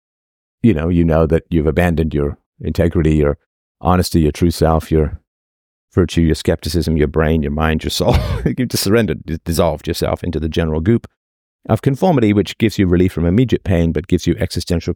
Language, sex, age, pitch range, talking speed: English, male, 50-69, 80-110 Hz, 185 wpm